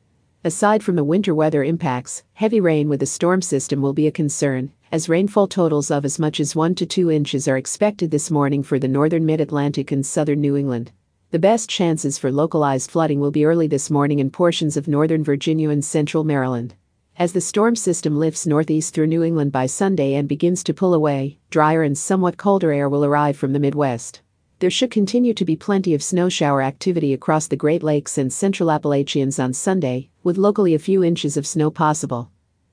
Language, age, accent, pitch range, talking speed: English, 50-69, American, 140-175 Hz, 205 wpm